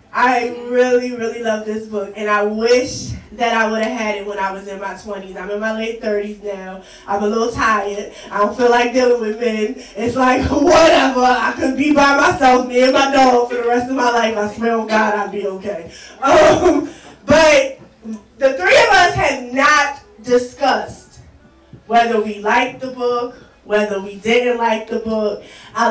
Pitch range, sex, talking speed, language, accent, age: 210-255 Hz, female, 195 wpm, English, American, 20-39